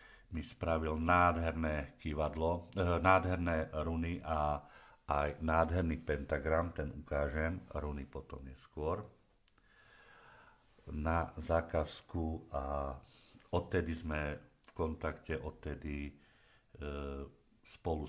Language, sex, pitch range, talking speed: Slovak, male, 75-90 Hz, 75 wpm